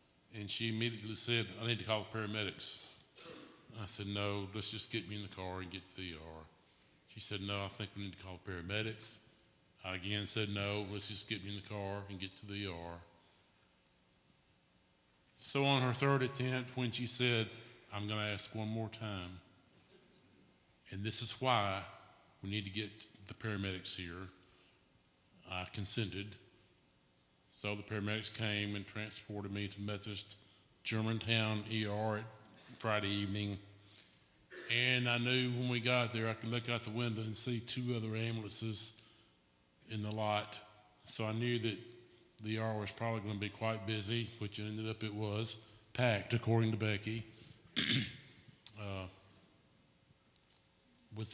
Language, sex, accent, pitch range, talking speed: English, male, American, 100-115 Hz, 160 wpm